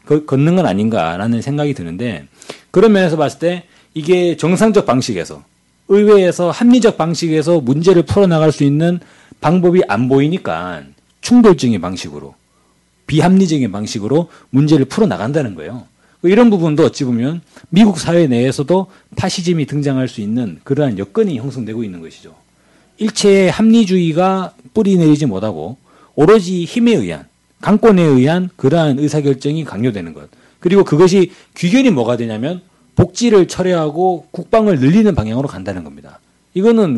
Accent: native